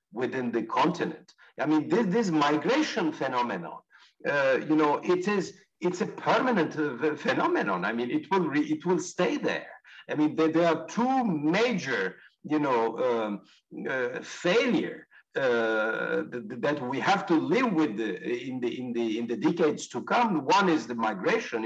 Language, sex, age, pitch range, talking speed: Turkish, male, 60-79, 130-215 Hz, 175 wpm